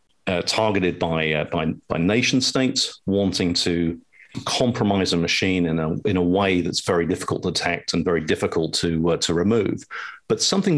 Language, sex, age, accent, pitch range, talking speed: English, male, 50-69, British, 85-105 Hz, 180 wpm